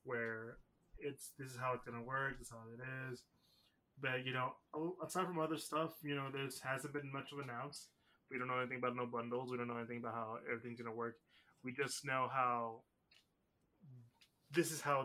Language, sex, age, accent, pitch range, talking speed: English, male, 20-39, American, 120-145 Hz, 205 wpm